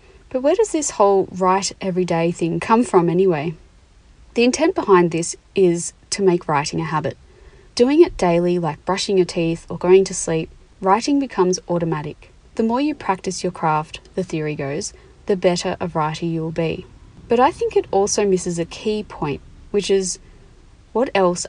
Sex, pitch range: female, 170-205 Hz